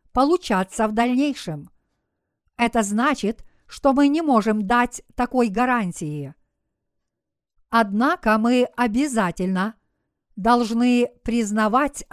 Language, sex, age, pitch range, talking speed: Russian, female, 50-69, 215-265 Hz, 85 wpm